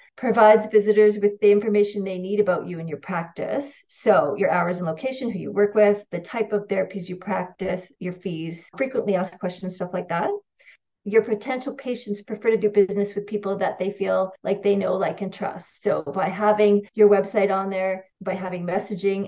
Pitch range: 185-215 Hz